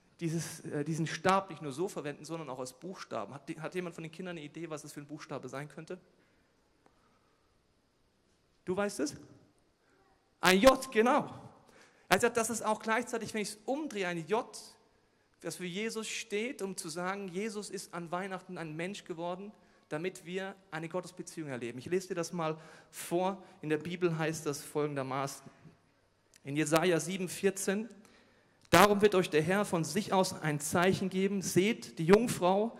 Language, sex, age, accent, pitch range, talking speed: German, male, 40-59, German, 150-190 Hz, 170 wpm